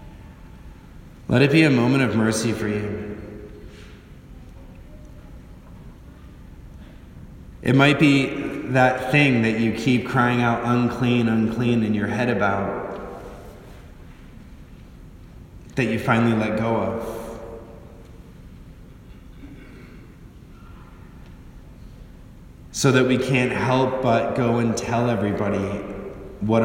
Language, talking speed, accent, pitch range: English, 95 wpm, American, 105-125 Hz